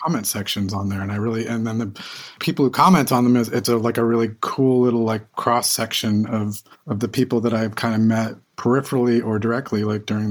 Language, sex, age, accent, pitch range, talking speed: English, male, 30-49, American, 105-125 Hz, 220 wpm